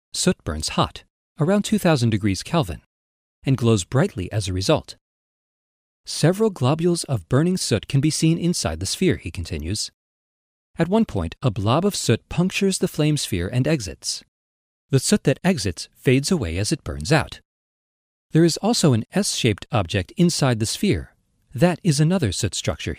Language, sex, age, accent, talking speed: English, male, 40-59, American, 165 wpm